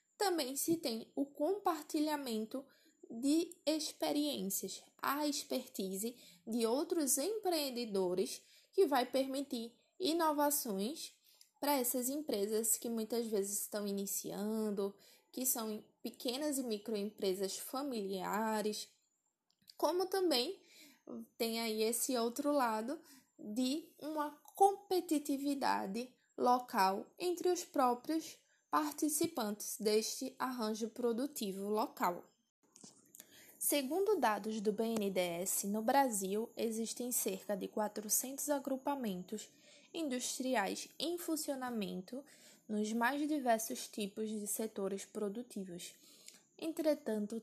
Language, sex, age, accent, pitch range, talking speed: Portuguese, female, 10-29, Brazilian, 215-295 Hz, 90 wpm